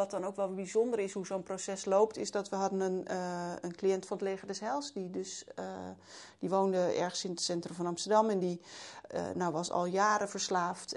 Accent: Dutch